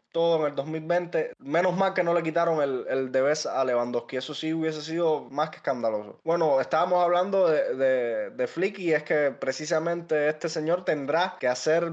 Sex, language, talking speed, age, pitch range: male, Spanish, 195 wpm, 20-39, 130-170 Hz